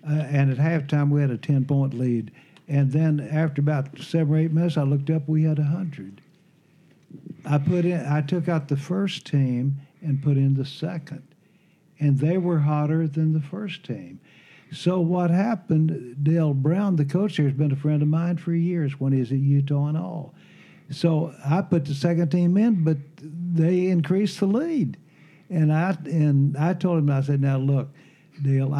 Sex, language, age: male, English, 60-79